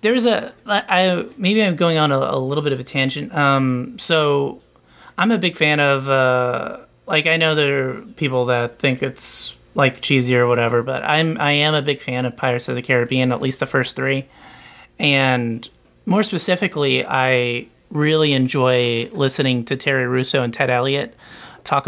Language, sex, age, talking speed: English, male, 30-49, 180 wpm